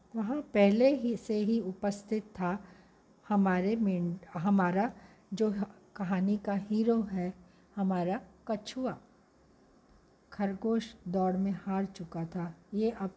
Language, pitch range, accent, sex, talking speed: Hindi, 185-215 Hz, native, female, 115 wpm